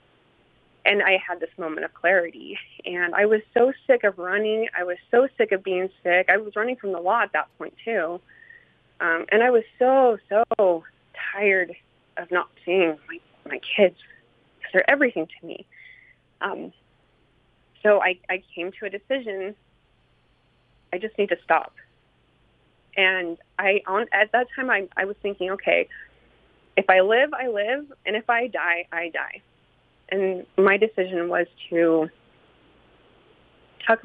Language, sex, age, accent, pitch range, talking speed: English, female, 30-49, American, 175-235 Hz, 160 wpm